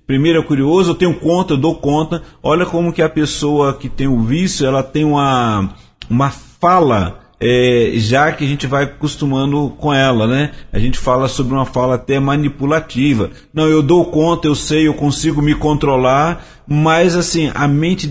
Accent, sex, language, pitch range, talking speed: Brazilian, male, Portuguese, 130-165 Hz, 185 wpm